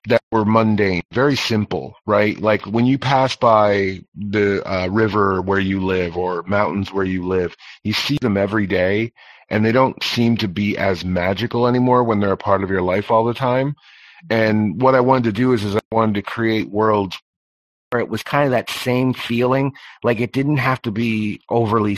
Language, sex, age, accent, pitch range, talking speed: English, male, 30-49, American, 95-115 Hz, 200 wpm